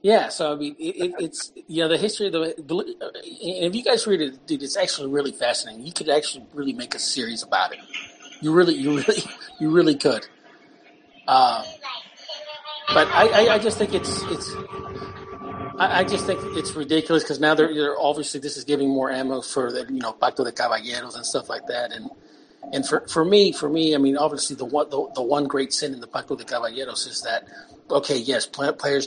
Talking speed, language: 210 wpm, English